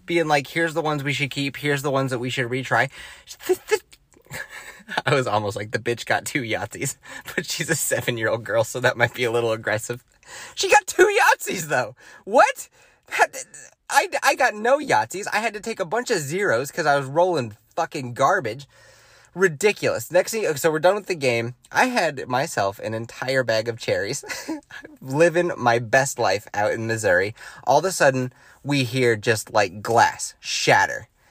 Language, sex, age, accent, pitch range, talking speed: English, male, 30-49, American, 120-165 Hz, 180 wpm